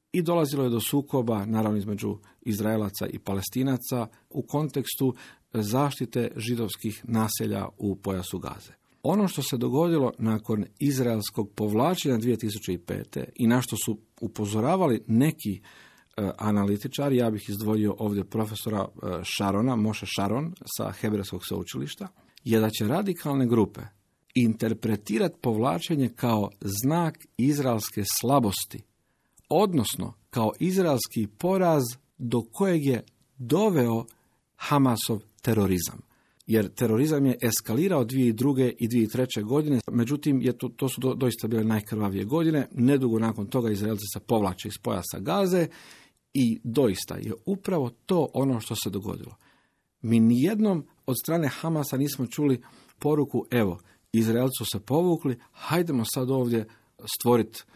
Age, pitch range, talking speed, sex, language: 50-69, 110-135 Hz, 125 wpm, male, Croatian